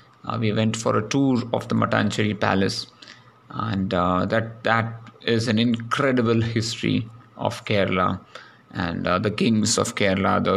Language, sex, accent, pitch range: English, male, Indian, 105-115 Hz